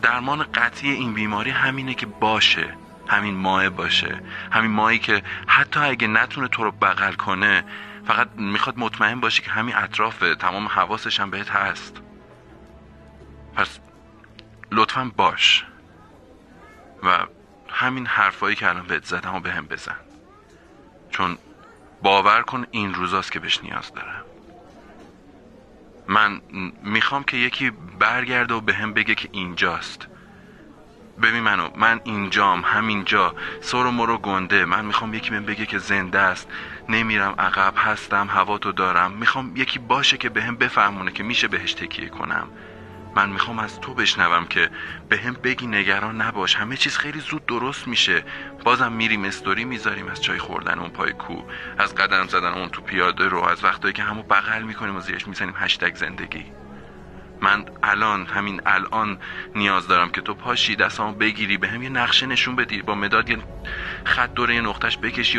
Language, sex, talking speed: Persian, male, 155 wpm